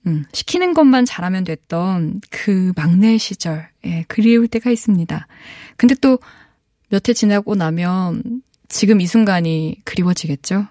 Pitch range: 175-235 Hz